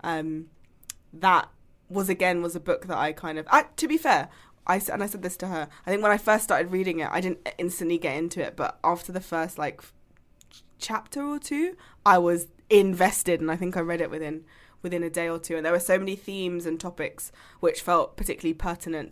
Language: English